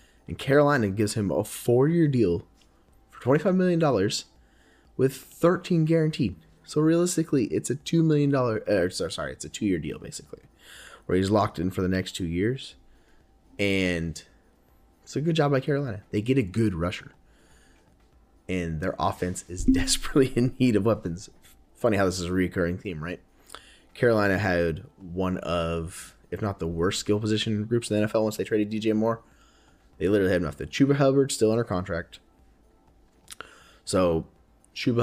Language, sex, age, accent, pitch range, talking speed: English, male, 20-39, American, 90-120 Hz, 165 wpm